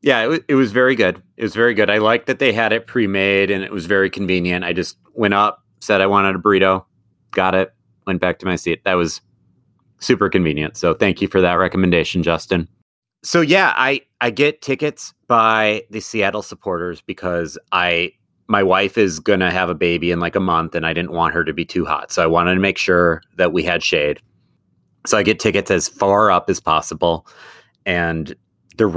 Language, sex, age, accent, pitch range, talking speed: English, male, 30-49, American, 90-125 Hz, 215 wpm